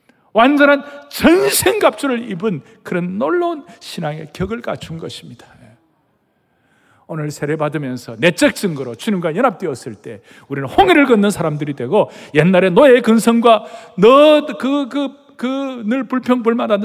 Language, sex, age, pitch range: Korean, male, 40-59, 135-220 Hz